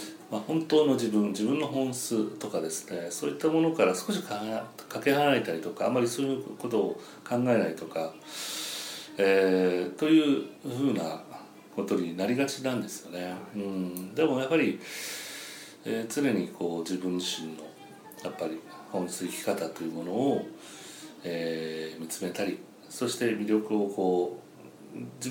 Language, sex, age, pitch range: Japanese, male, 40-59, 90-130 Hz